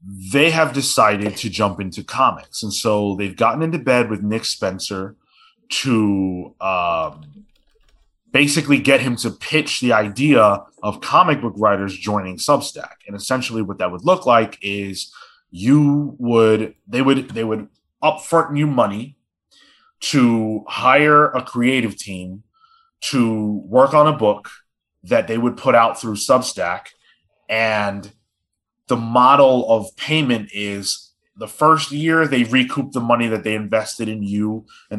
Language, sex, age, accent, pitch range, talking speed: English, male, 20-39, American, 105-135 Hz, 145 wpm